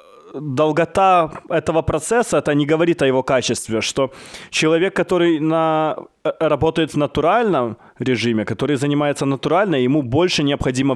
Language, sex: Russian, male